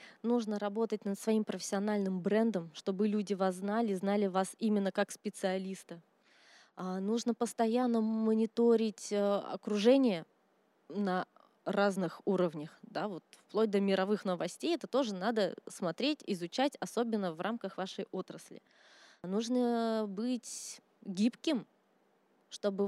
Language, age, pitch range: Russian, 20-39, 195-230 Hz